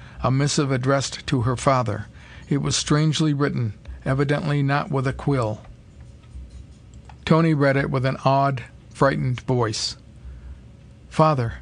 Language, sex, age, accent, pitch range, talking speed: English, male, 50-69, American, 115-150 Hz, 125 wpm